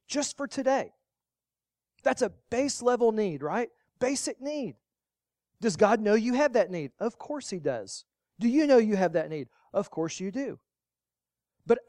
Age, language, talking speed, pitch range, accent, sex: 40-59, English, 170 wpm, 170-225 Hz, American, male